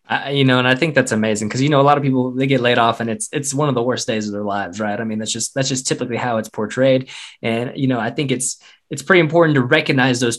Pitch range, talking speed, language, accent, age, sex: 120-155 Hz, 305 wpm, English, American, 20-39, male